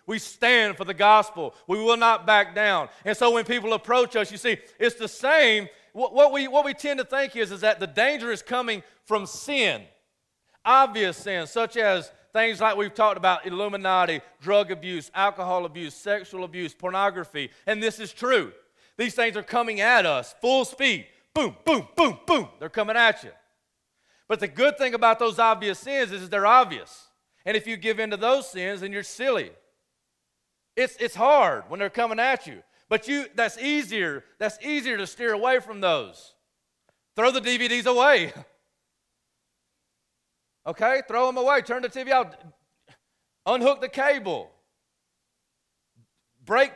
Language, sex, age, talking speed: English, male, 40-59, 170 wpm